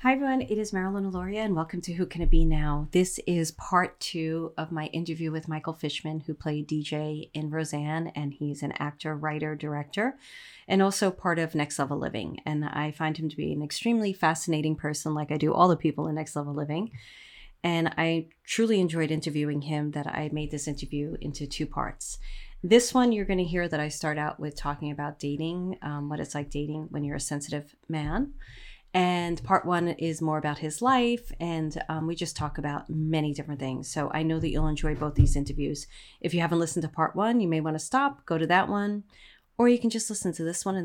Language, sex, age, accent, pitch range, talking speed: English, female, 30-49, American, 150-180 Hz, 220 wpm